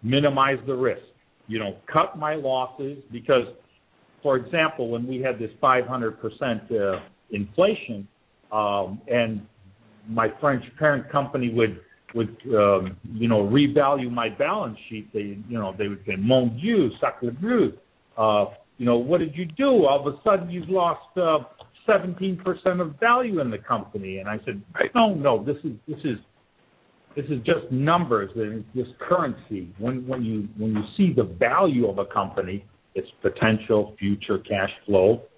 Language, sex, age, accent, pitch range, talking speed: English, male, 50-69, American, 110-150 Hz, 165 wpm